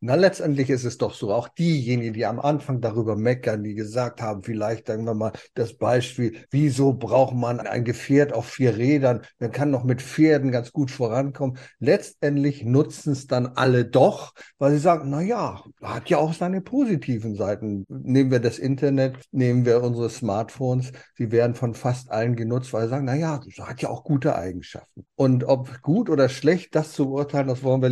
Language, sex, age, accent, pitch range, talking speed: German, male, 50-69, German, 120-150 Hz, 195 wpm